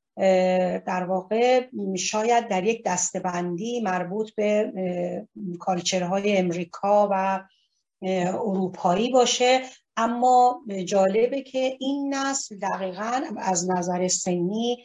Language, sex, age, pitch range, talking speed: Persian, female, 40-59, 190-245 Hz, 95 wpm